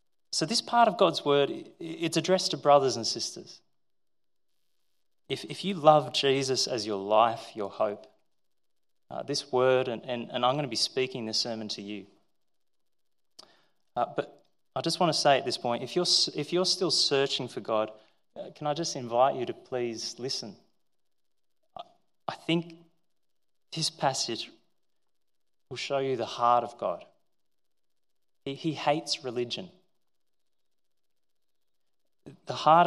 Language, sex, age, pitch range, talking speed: English, male, 30-49, 120-160 Hz, 145 wpm